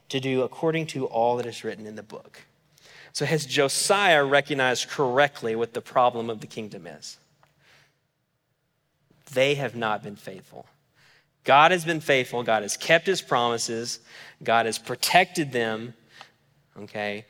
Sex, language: male, English